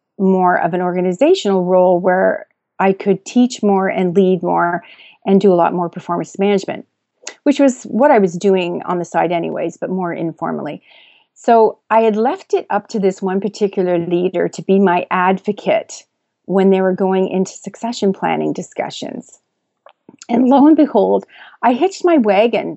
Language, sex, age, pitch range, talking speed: English, female, 40-59, 185-220 Hz, 170 wpm